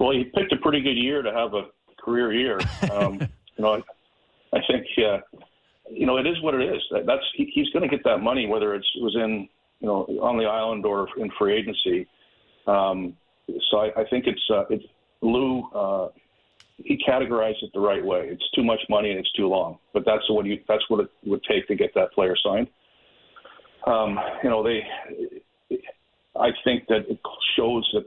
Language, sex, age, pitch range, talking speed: English, male, 50-69, 100-130 Hz, 205 wpm